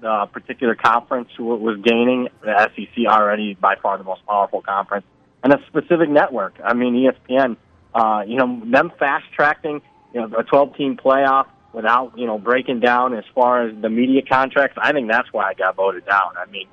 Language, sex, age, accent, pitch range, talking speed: English, male, 30-49, American, 105-130 Hz, 195 wpm